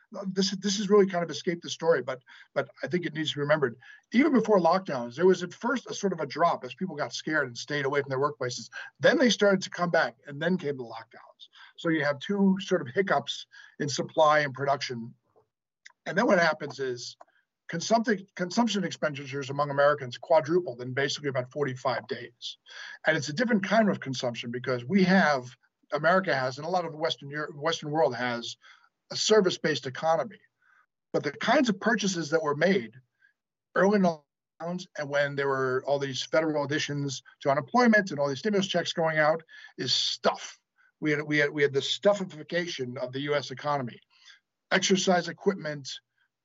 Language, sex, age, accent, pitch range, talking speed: English, male, 50-69, American, 140-185 Hz, 190 wpm